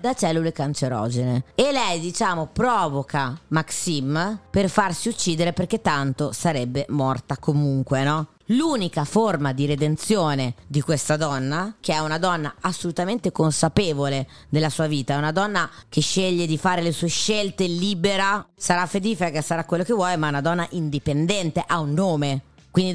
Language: Italian